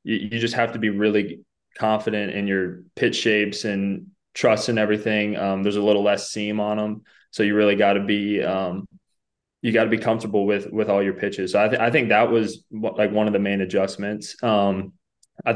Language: English